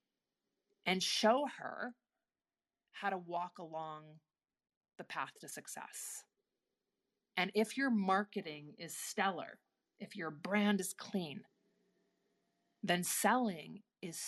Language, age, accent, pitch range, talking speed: English, 30-49, American, 165-210 Hz, 105 wpm